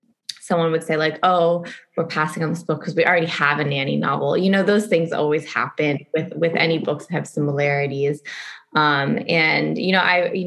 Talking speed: 205 wpm